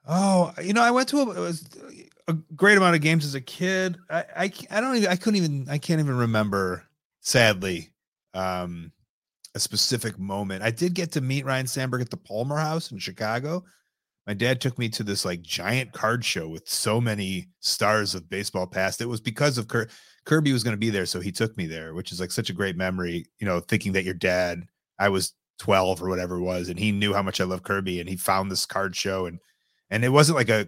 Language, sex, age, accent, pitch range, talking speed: English, male, 30-49, American, 95-135 Hz, 235 wpm